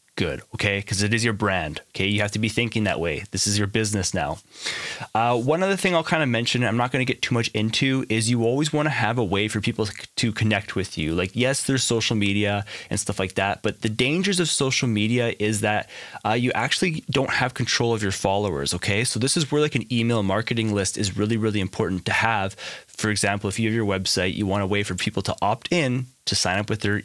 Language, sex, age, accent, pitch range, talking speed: English, male, 20-39, American, 100-120 Hz, 255 wpm